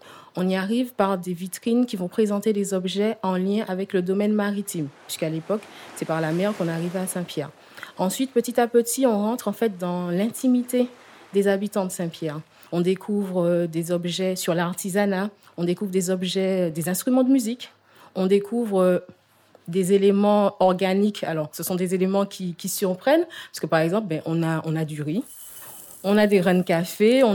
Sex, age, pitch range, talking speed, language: female, 30-49, 170-210 Hz, 185 wpm, French